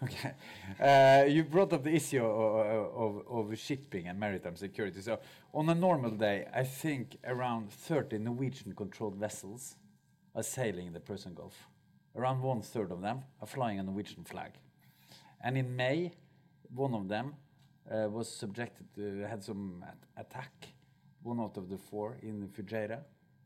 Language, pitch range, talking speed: English, 105-140 Hz, 160 wpm